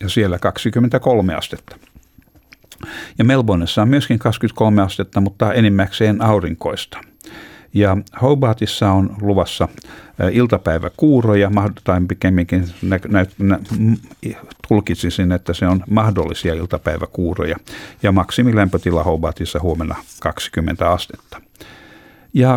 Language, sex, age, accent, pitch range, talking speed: Finnish, male, 60-79, native, 90-110 Hz, 90 wpm